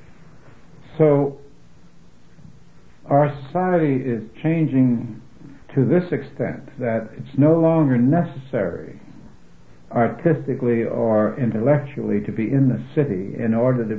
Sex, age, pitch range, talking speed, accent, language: male, 70-89, 110-140 Hz, 105 wpm, American, English